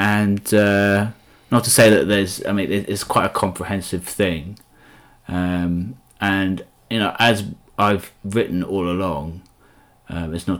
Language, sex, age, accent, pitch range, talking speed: English, male, 30-49, British, 85-100 Hz, 145 wpm